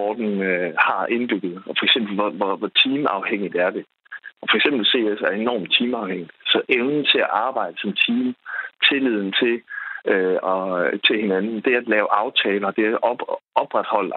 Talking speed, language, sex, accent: 180 wpm, Danish, male, native